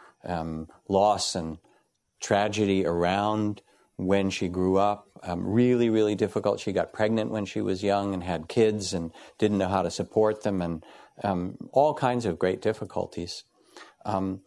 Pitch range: 95-110 Hz